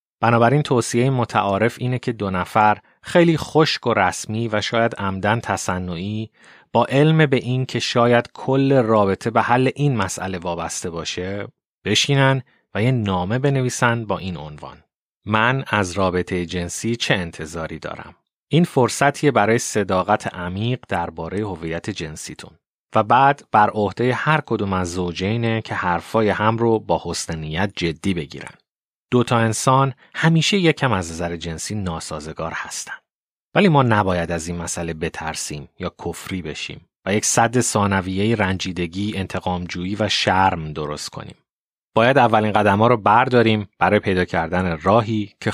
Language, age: Persian, 30-49